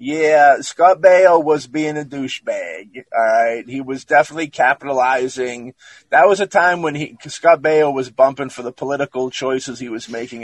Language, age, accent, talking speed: English, 30-49, American, 170 wpm